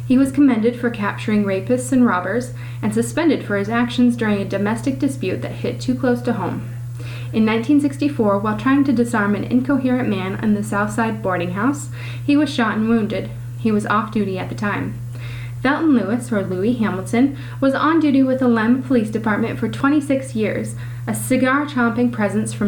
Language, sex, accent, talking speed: English, female, American, 180 wpm